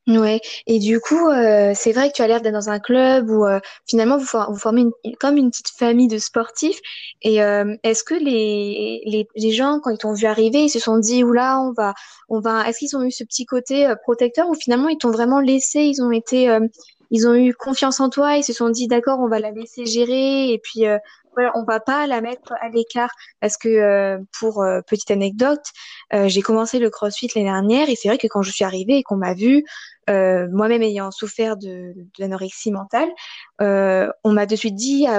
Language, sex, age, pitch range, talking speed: French, female, 10-29, 210-255 Hz, 240 wpm